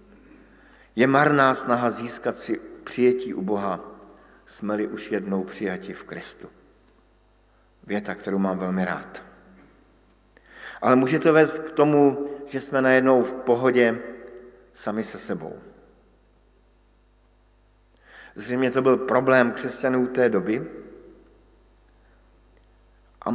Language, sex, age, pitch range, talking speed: Slovak, male, 50-69, 105-125 Hz, 105 wpm